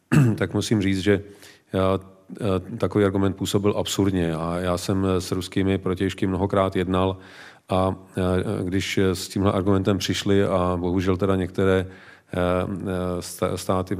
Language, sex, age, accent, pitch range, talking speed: Czech, male, 40-59, native, 90-100 Hz, 120 wpm